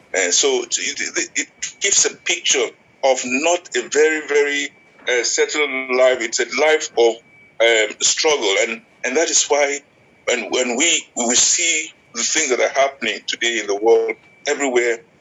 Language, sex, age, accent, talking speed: English, male, 50-69, Nigerian, 160 wpm